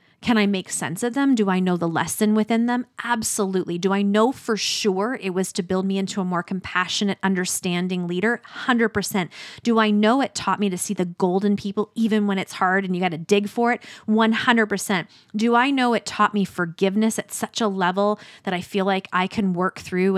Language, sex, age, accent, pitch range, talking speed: English, female, 20-39, American, 185-220 Hz, 215 wpm